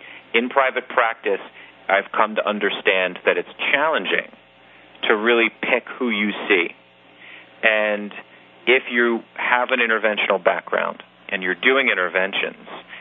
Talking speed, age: 125 wpm, 40-59